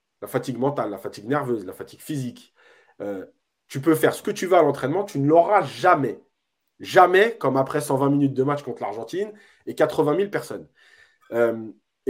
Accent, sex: French, male